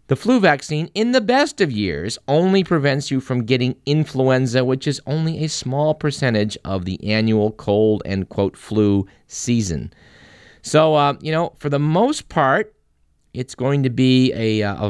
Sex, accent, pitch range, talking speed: male, American, 110-155 Hz, 170 wpm